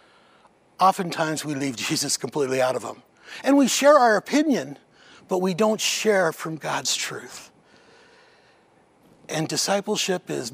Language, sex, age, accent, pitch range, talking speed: English, male, 60-79, American, 170-220 Hz, 130 wpm